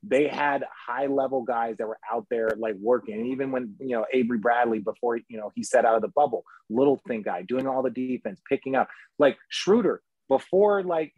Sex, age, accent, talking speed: male, 30-49, American, 215 wpm